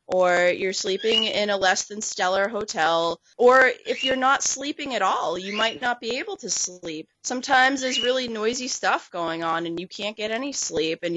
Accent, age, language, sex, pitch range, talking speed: American, 20-39, English, female, 185-240 Hz, 200 wpm